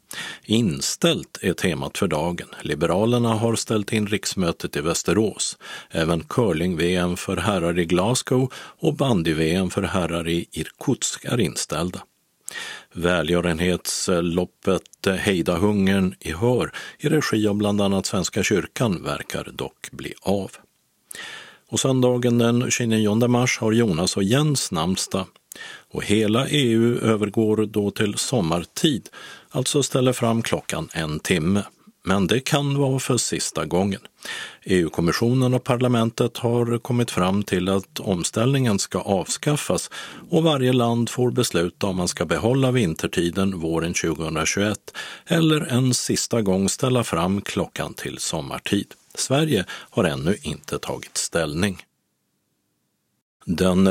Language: Swedish